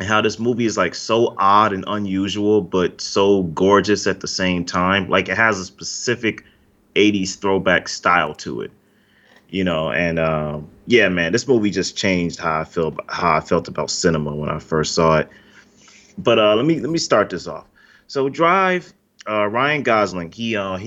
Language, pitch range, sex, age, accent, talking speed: English, 85-105 Hz, male, 30-49, American, 190 wpm